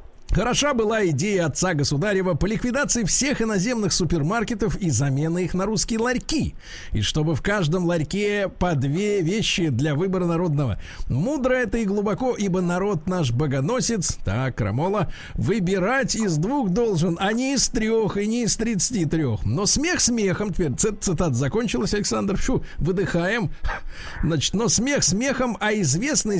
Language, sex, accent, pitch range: Russian, male, native, 165-245 Hz